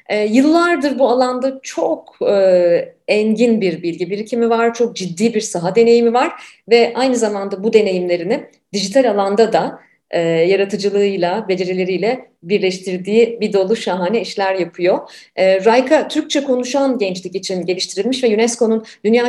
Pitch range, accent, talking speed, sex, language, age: 190-240 Hz, native, 135 wpm, female, Turkish, 40-59